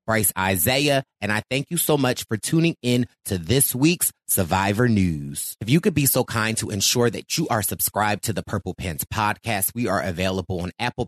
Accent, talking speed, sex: American, 205 wpm, male